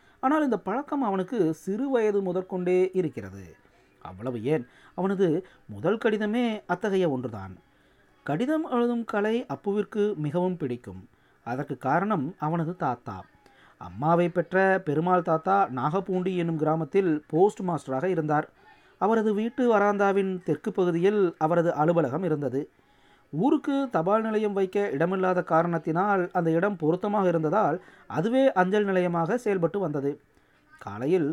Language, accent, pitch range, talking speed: Tamil, native, 150-195 Hz, 115 wpm